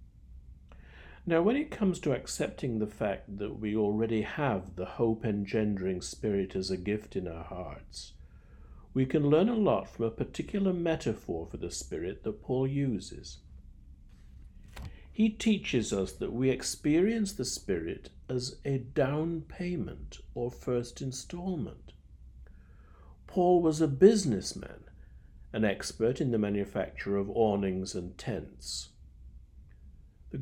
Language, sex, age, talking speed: English, male, 60-79, 130 wpm